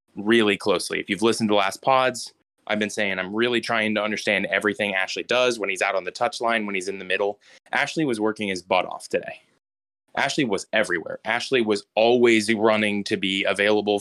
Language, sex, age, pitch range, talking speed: English, male, 20-39, 100-120 Hz, 200 wpm